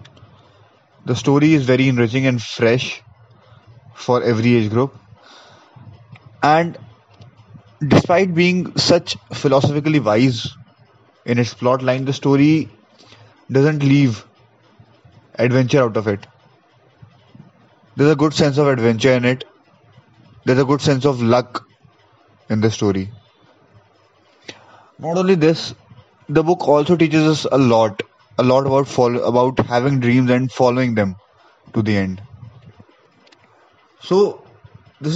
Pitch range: 115-140 Hz